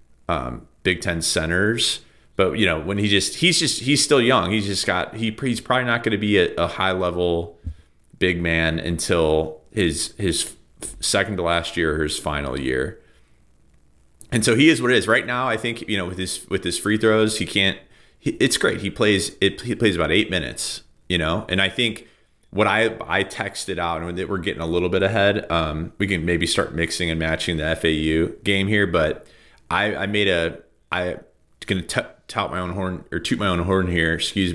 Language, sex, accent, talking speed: English, male, American, 210 wpm